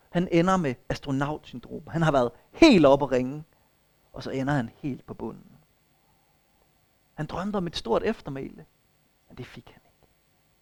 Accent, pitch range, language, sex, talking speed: native, 140-195 Hz, Danish, male, 165 wpm